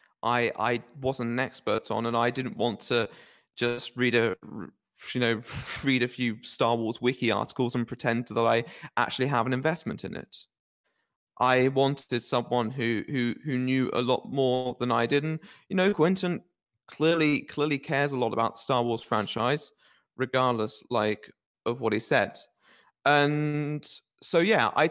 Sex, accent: male, British